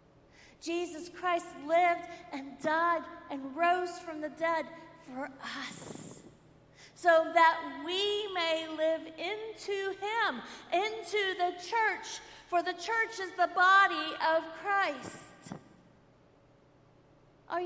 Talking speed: 105 wpm